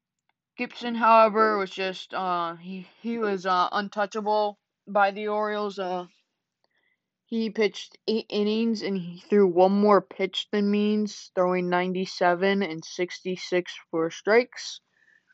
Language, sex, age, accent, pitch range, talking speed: English, female, 20-39, American, 180-210 Hz, 125 wpm